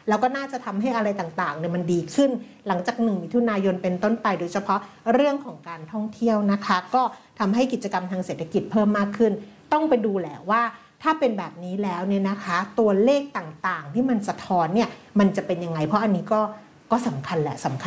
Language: Thai